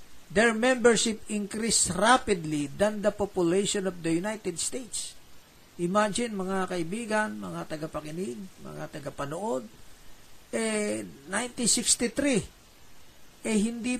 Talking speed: 95 wpm